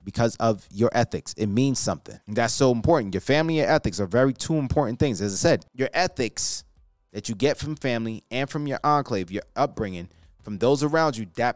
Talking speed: 210 wpm